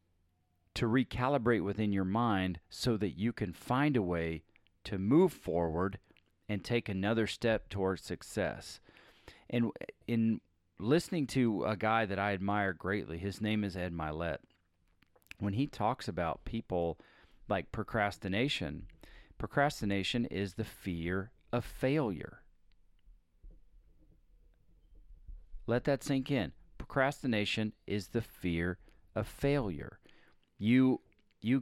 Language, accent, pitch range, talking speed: English, American, 90-115 Hz, 115 wpm